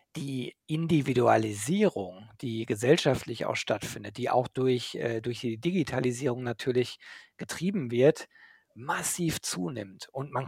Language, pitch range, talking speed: German, 120-150 Hz, 110 wpm